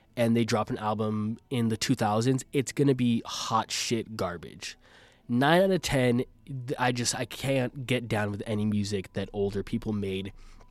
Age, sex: 20-39, male